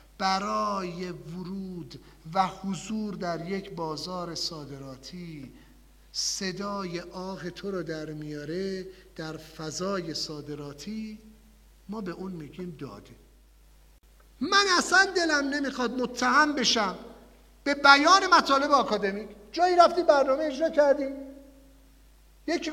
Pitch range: 185-295 Hz